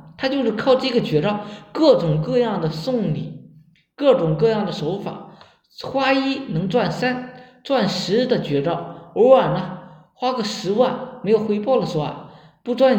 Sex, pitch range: male, 180-255 Hz